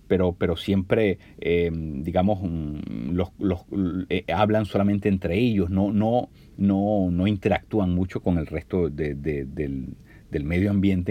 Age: 50-69